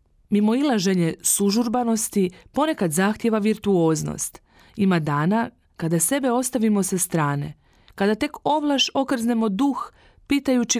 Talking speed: 105 wpm